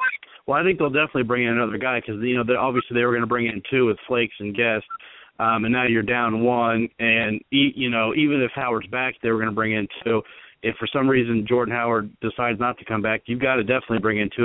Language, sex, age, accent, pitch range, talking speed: English, male, 40-59, American, 115-130 Hz, 260 wpm